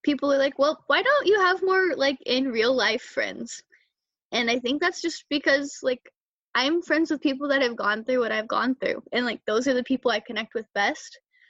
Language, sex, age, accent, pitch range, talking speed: English, female, 10-29, American, 215-265 Hz, 225 wpm